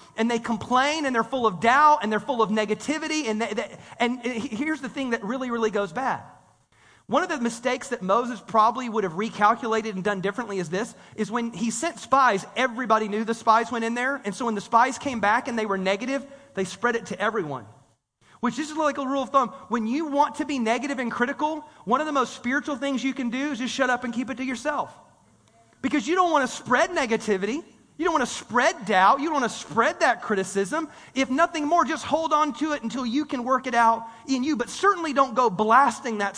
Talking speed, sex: 235 wpm, male